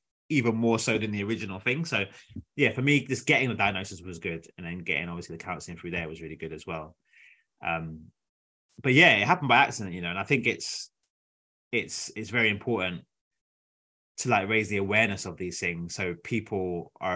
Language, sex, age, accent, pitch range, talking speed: English, male, 20-39, British, 85-110 Hz, 205 wpm